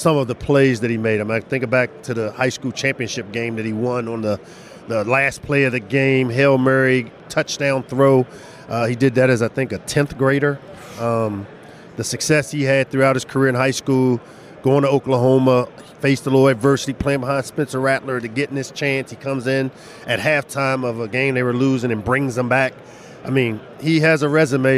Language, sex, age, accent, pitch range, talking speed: English, male, 40-59, American, 120-140 Hz, 220 wpm